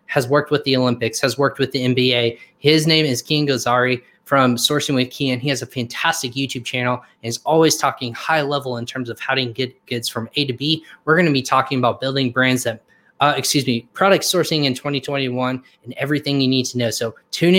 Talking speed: 225 wpm